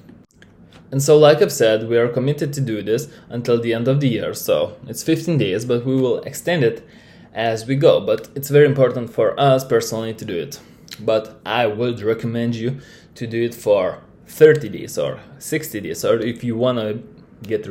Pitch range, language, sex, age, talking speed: 110-140 Hz, English, male, 20-39, 205 wpm